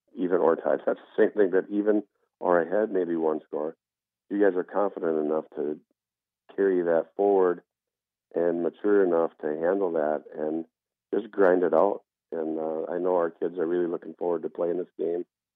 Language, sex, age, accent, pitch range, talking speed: English, male, 50-69, American, 85-100 Hz, 185 wpm